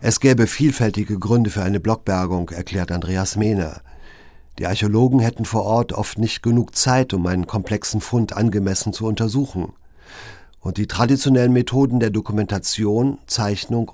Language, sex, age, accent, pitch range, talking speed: German, male, 50-69, German, 100-120 Hz, 140 wpm